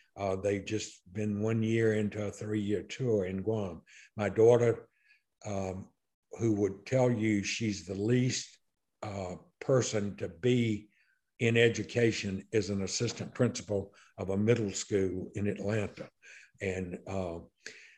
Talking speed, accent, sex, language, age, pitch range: 135 wpm, American, male, English, 60-79, 100-110 Hz